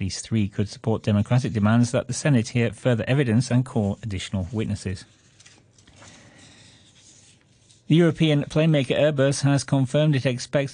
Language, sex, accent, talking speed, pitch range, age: English, male, British, 135 wpm, 110-130 Hz, 40-59